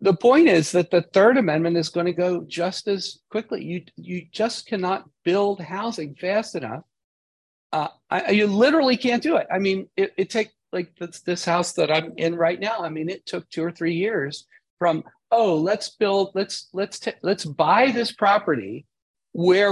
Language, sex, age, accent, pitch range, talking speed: English, male, 50-69, American, 165-215 Hz, 190 wpm